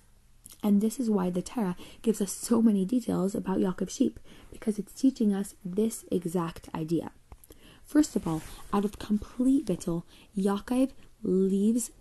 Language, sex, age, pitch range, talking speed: English, female, 20-39, 190-240 Hz, 150 wpm